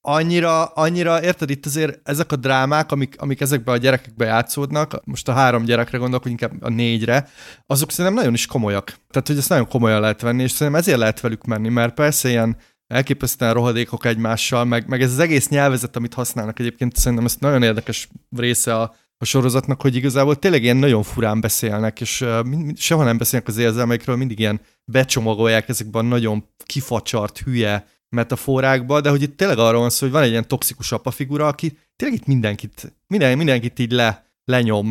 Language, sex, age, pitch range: Hungarian, male, 30-49, 115-145 Hz